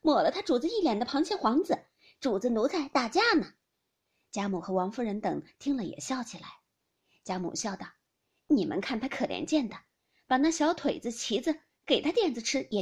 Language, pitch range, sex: Chinese, 215-310 Hz, female